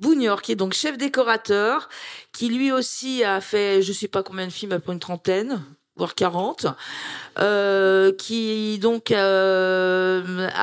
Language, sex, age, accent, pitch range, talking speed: French, female, 40-59, French, 185-235 Hz, 150 wpm